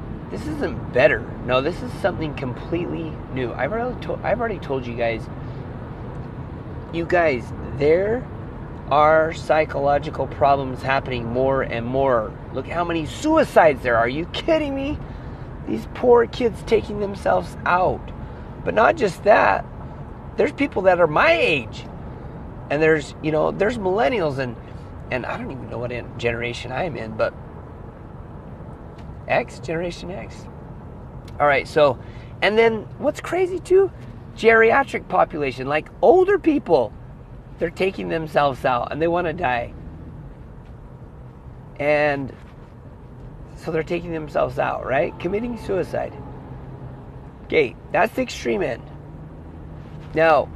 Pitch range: 120-170 Hz